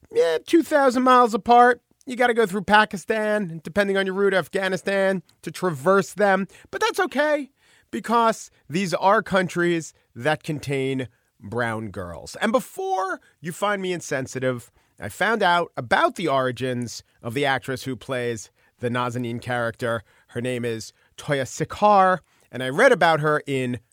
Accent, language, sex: American, English, male